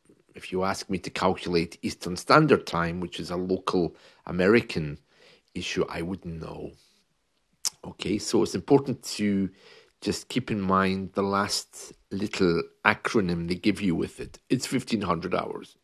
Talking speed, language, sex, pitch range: 150 wpm, English, male, 90-120 Hz